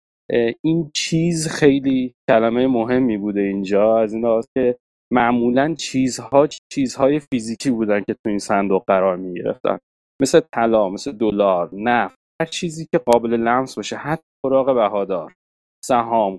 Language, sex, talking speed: Persian, male, 140 wpm